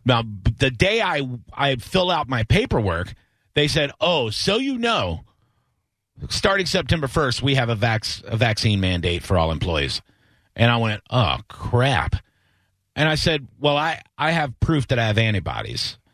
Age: 40-59